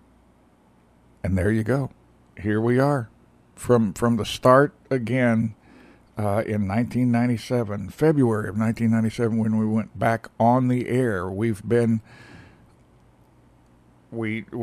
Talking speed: 130 wpm